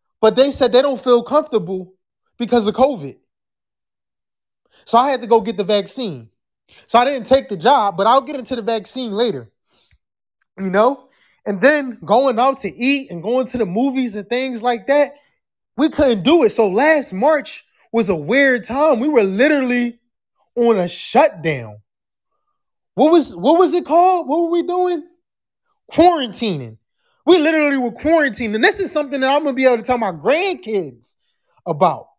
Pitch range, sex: 215-300 Hz, male